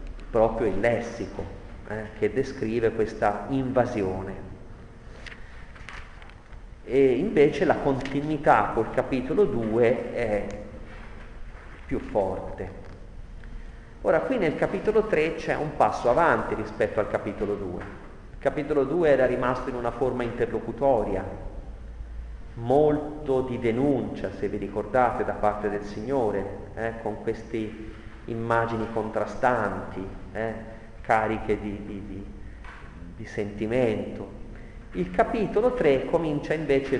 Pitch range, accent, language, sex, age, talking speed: 105-125 Hz, native, Italian, male, 40-59, 110 wpm